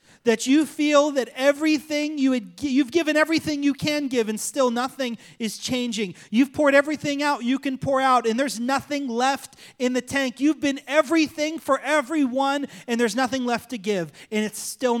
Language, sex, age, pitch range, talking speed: English, male, 30-49, 190-270 Hz, 190 wpm